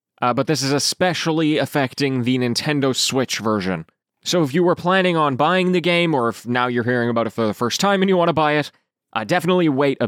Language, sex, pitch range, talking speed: English, male, 120-165 Hz, 240 wpm